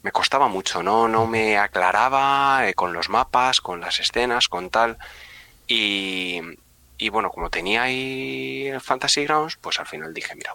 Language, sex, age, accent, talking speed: Spanish, male, 30-49, Spanish, 165 wpm